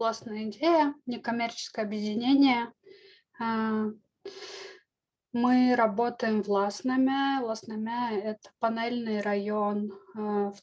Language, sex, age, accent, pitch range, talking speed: Russian, female, 20-39, native, 205-245 Hz, 80 wpm